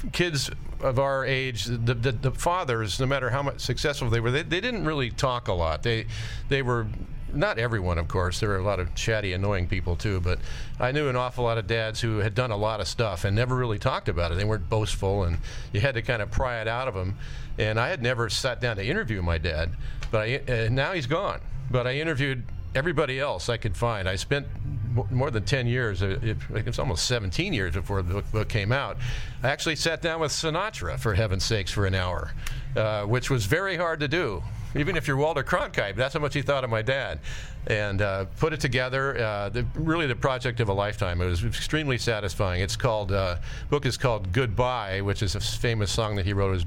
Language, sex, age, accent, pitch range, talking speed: English, male, 50-69, American, 100-130 Hz, 225 wpm